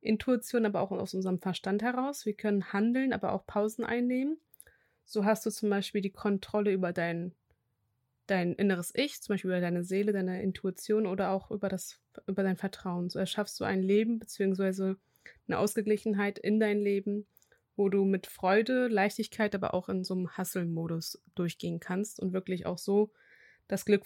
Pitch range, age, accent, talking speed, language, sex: 185-210 Hz, 20-39, German, 175 wpm, German, female